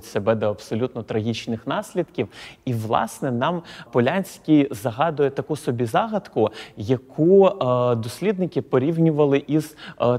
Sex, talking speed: male, 110 wpm